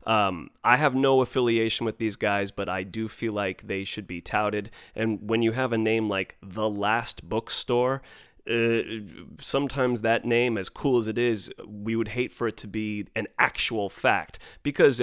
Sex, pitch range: male, 95-120 Hz